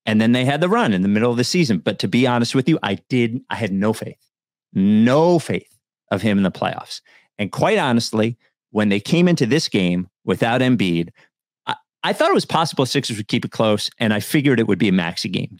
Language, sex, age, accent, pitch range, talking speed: English, male, 40-59, American, 115-145 Hz, 240 wpm